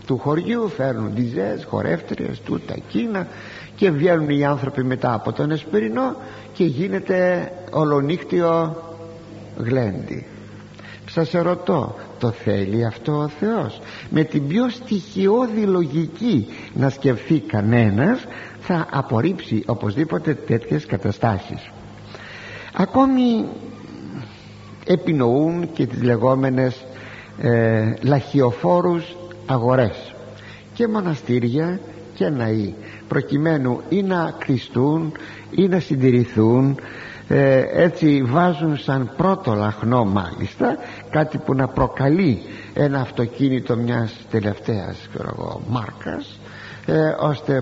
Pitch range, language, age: 115-165 Hz, Greek, 60-79